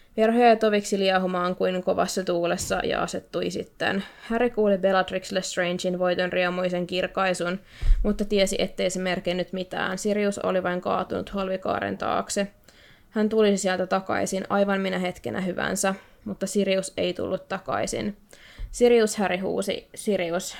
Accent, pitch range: native, 180-205 Hz